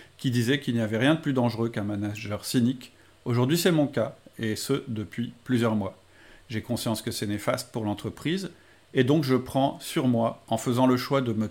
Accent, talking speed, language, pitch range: French, 210 wpm, French, 105-130 Hz